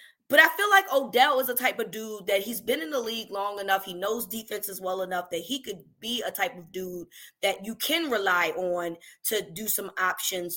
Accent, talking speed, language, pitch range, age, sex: American, 225 wpm, English, 185-245 Hz, 20-39, female